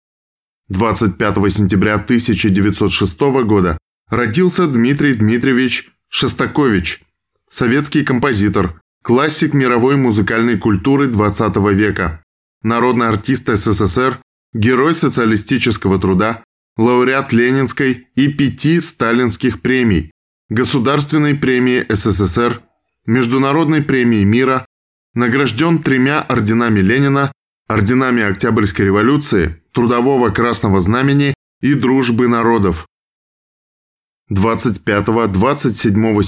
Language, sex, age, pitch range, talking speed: Russian, male, 20-39, 105-130 Hz, 80 wpm